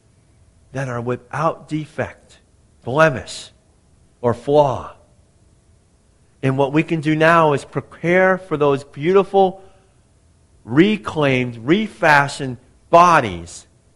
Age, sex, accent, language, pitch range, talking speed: 50-69, male, American, English, 120-195 Hz, 90 wpm